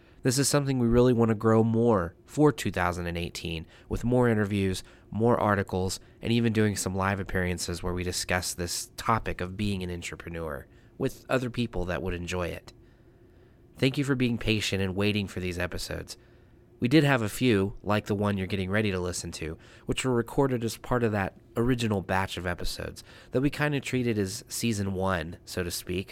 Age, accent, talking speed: 30-49, American, 195 wpm